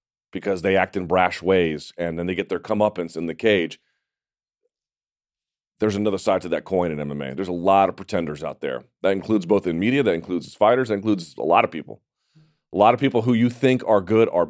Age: 40-59